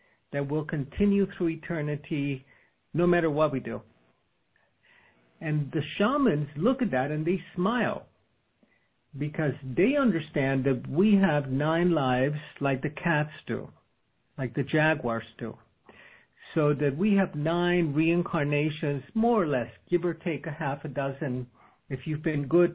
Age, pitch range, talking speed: 50-69, 135-170 Hz, 145 wpm